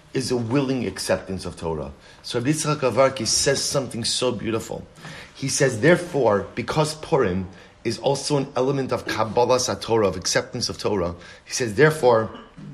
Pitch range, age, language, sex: 110-130 Hz, 30-49, English, male